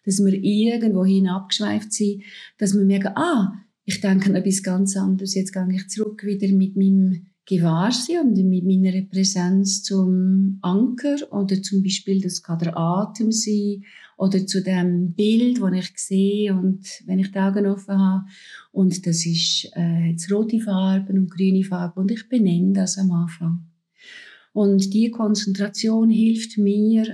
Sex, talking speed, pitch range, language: female, 155 wpm, 185-210 Hz, German